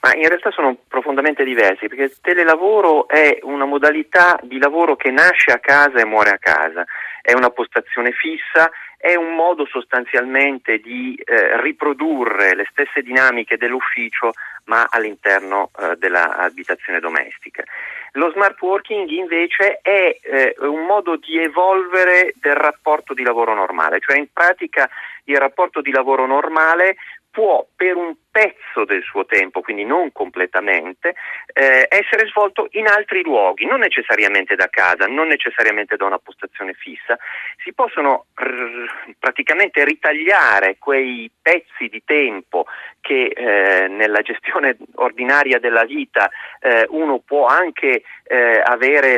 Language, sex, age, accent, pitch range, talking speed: Italian, male, 40-59, native, 130-185 Hz, 135 wpm